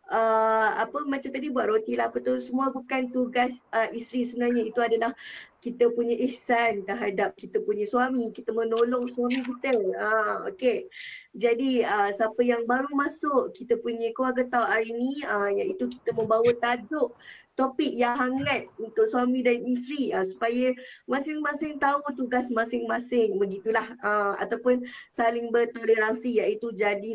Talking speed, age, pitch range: 140 wpm, 20-39, 220-255 Hz